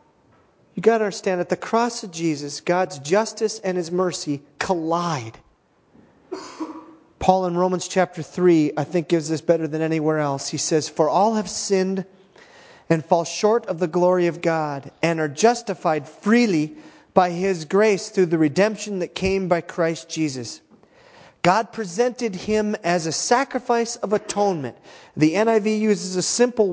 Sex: male